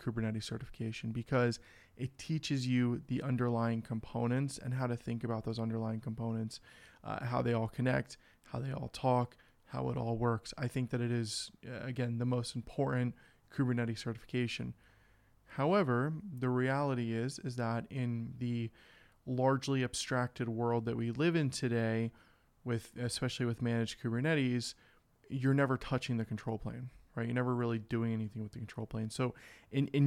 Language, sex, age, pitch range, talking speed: English, male, 20-39, 115-130 Hz, 160 wpm